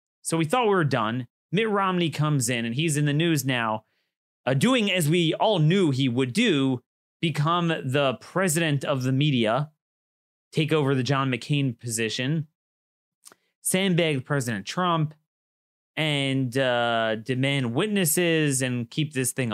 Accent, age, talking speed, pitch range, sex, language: American, 30-49, 145 wpm, 125-165 Hz, male, English